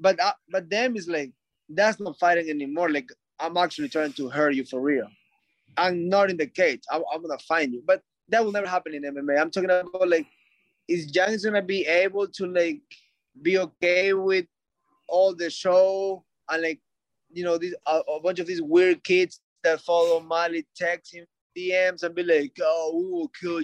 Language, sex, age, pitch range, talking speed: English, male, 20-39, 155-200 Hz, 205 wpm